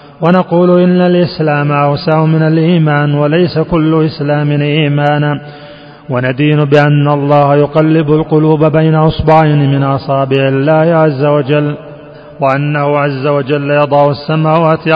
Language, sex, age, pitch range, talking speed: Arabic, male, 30-49, 145-155 Hz, 110 wpm